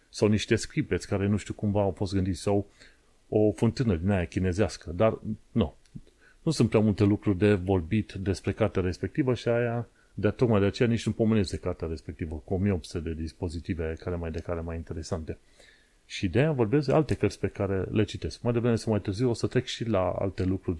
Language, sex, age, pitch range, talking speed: Romanian, male, 30-49, 95-115 Hz, 205 wpm